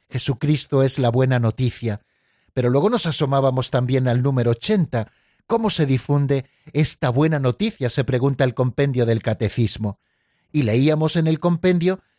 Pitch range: 130-170 Hz